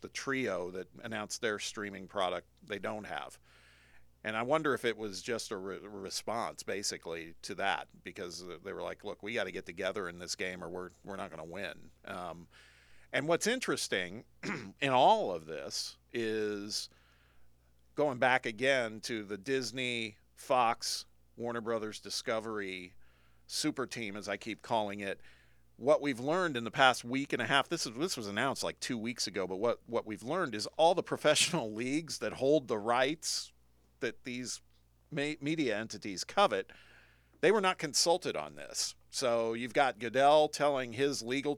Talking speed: 175 wpm